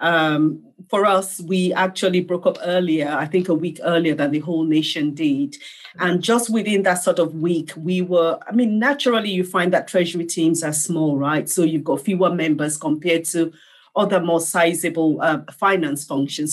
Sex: female